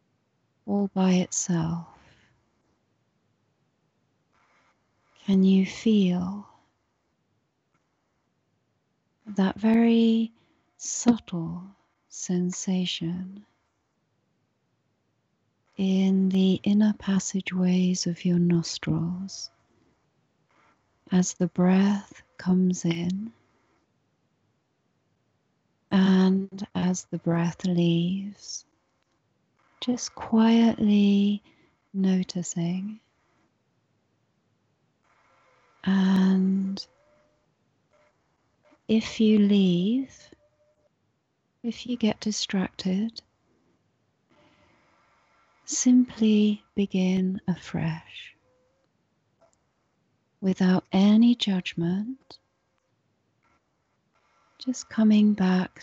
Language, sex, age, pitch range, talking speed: English, female, 30-49, 180-210 Hz, 50 wpm